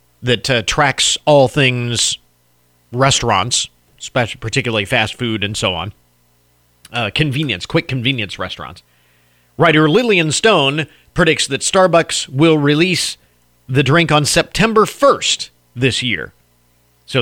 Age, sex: 40-59, male